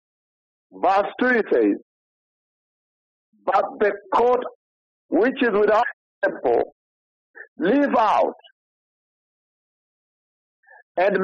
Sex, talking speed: male, 70 wpm